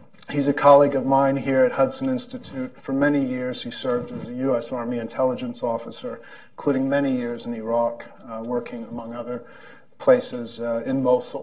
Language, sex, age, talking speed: English, male, 40-59, 175 wpm